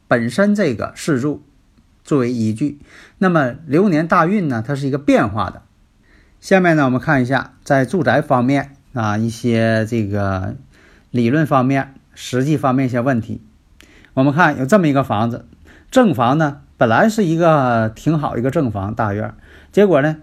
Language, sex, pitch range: Chinese, male, 95-160 Hz